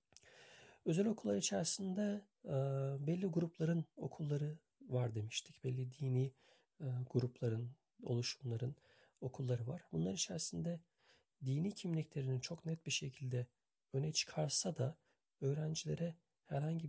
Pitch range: 130-160 Hz